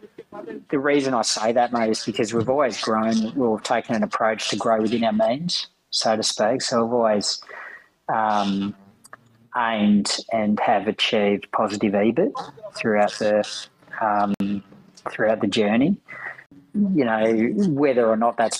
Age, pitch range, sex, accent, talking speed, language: 40-59, 105-125 Hz, male, Australian, 145 wpm, English